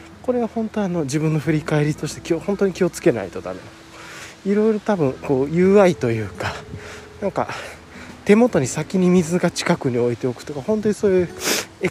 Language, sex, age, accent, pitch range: Japanese, male, 20-39, native, 110-175 Hz